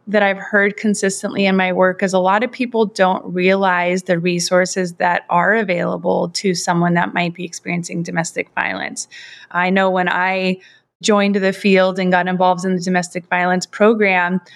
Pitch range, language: 180-205 Hz, English